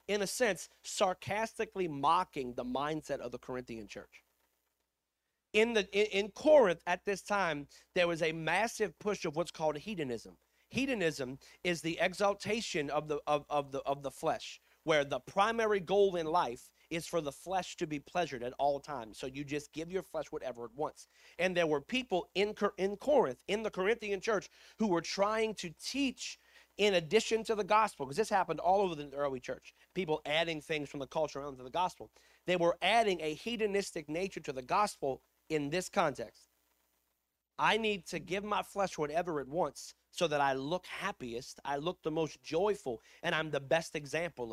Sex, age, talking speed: male, 40-59, 190 wpm